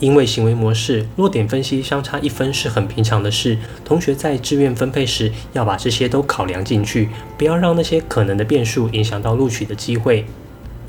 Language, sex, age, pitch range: Chinese, male, 20-39, 110-135 Hz